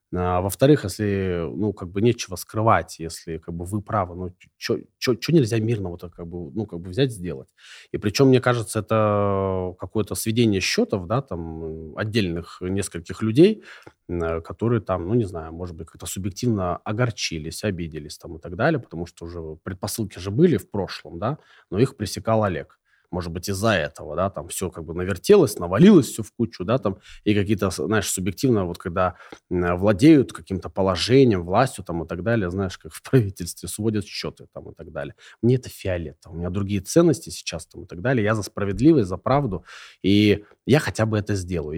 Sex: male